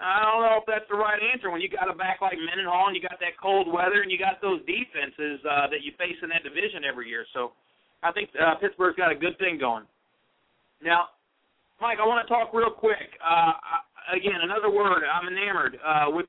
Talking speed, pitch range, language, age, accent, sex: 230 wpm, 175-250 Hz, English, 40-59, American, male